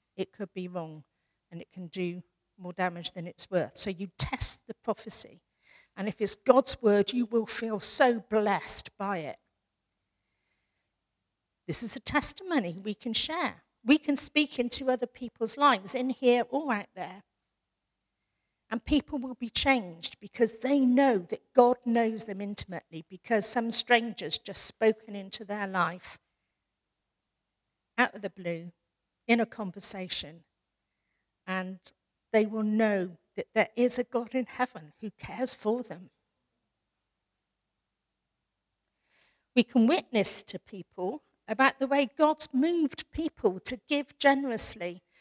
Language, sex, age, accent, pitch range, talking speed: English, female, 50-69, British, 180-255 Hz, 140 wpm